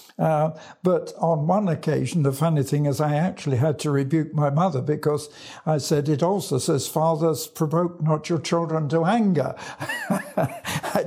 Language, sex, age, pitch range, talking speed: English, male, 60-79, 150-195 Hz, 165 wpm